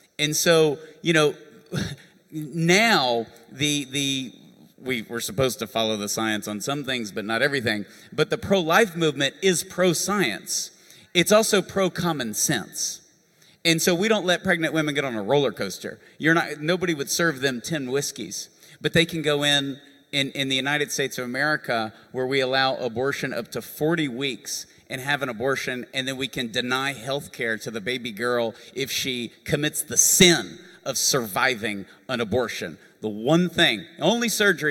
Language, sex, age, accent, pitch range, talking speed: English, male, 40-59, American, 125-165 Hz, 170 wpm